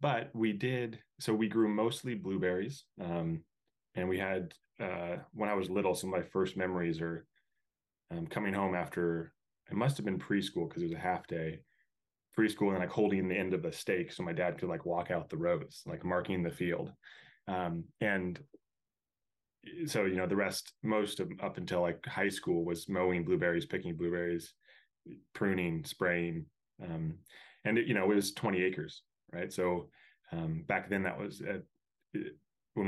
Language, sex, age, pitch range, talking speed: English, male, 20-39, 85-100 Hz, 185 wpm